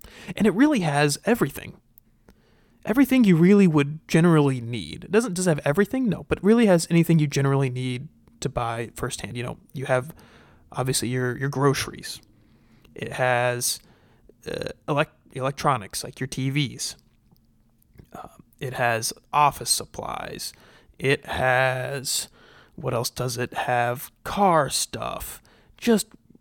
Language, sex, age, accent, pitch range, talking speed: English, male, 30-49, American, 130-195 Hz, 135 wpm